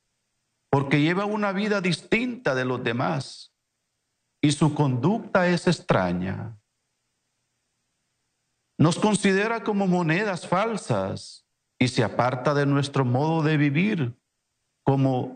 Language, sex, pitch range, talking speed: English, male, 120-175 Hz, 105 wpm